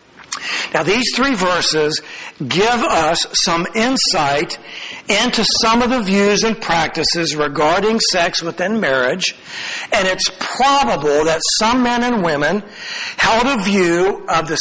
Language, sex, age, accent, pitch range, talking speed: English, male, 60-79, American, 160-215 Hz, 130 wpm